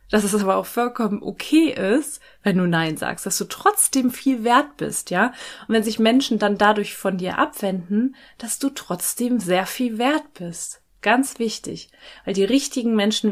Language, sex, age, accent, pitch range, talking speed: German, female, 20-39, German, 185-245 Hz, 180 wpm